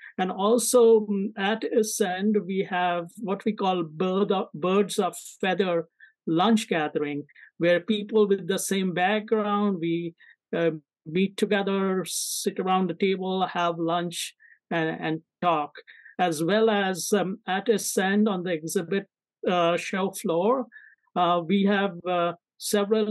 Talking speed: 130 wpm